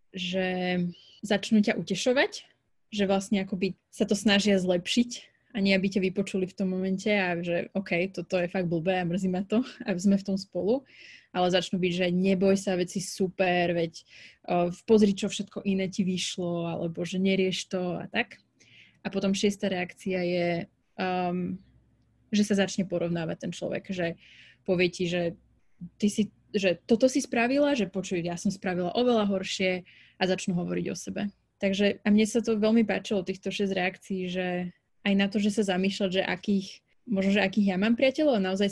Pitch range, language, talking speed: 180-205 Hz, Slovak, 185 wpm